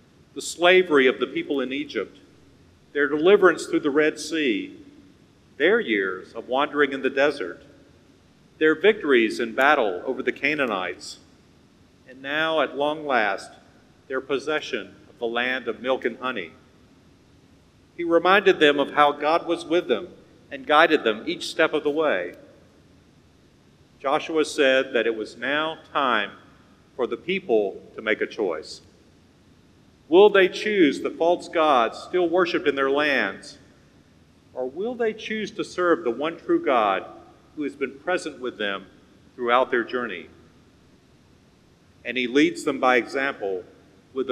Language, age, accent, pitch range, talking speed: English, 50-69, American, 130-180 Hz, 150 wpm